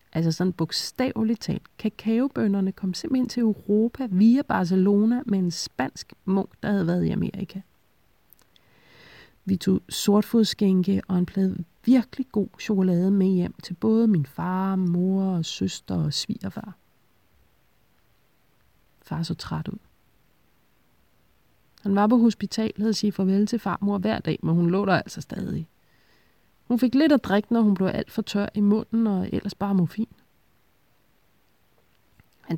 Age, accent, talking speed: 30-49, native, 145 wpm